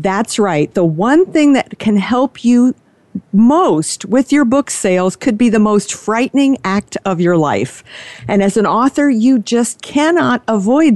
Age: 50-69